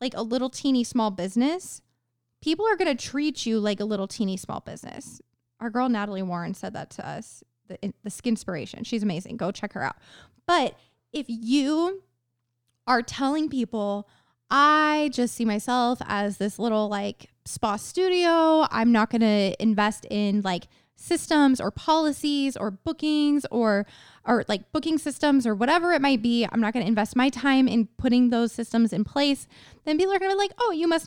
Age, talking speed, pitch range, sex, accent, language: 20-39, 185 wpm, 205-285 Hz, female, American, English